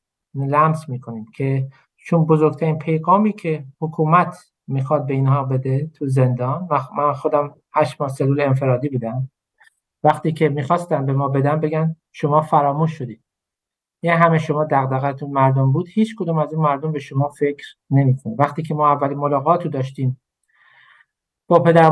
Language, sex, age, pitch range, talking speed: Persian, male, 50-69, 135-160 Hz, 150 wpm